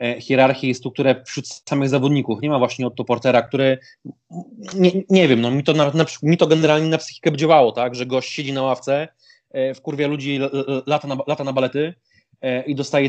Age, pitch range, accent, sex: 20-39, 120-140 Hz, native, male